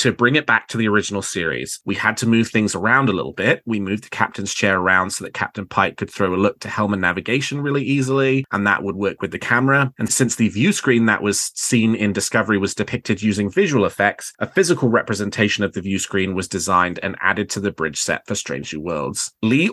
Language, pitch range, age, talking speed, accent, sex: English, 100-130 Hz, 30-49, 235 wpm, British, male